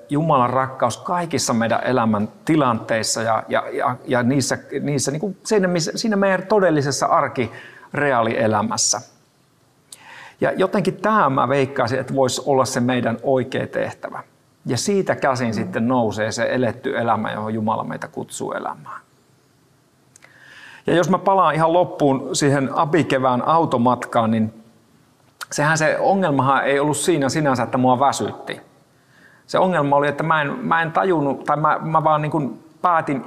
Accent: native